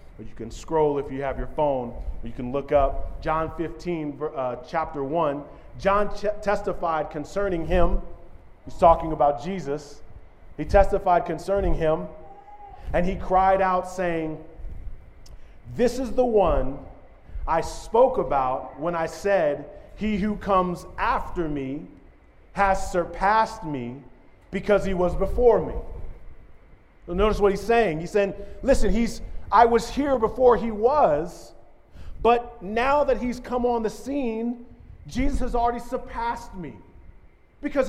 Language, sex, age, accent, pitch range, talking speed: English, male, 40-59, American, 160-235 Hz, 140 wpm